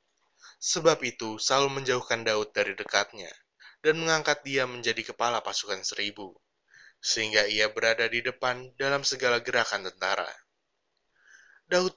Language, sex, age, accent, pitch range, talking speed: Indonesian, male, 20-39, native, 115-150 Hz, 120 wpm